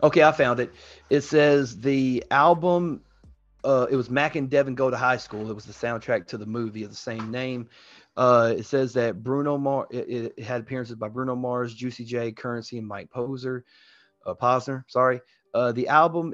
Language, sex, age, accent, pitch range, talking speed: English, male, 30-49, American, 110-130 Hz, 200 wpm